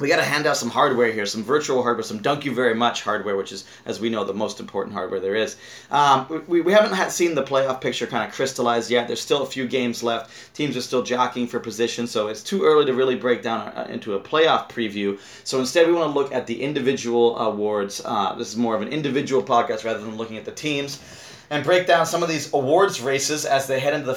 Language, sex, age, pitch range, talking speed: English, male, 30-49, 115-140 Hz, 250 wpm